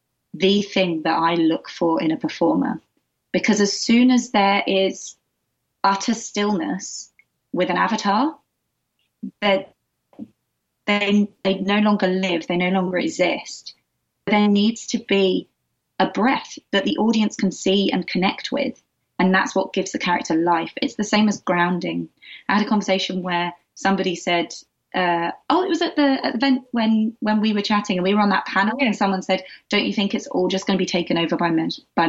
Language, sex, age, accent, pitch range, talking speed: English, female, 20-39, British, 180-215 Hz, 185 wpm